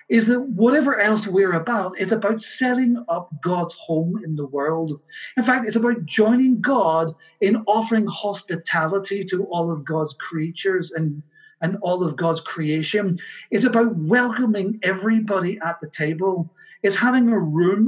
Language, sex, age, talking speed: English, male, 40-59, 155 wpm